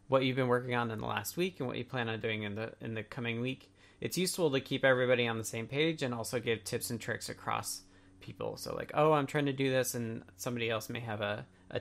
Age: 20-39